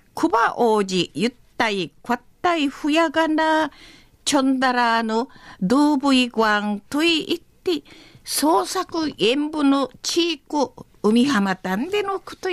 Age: 50-69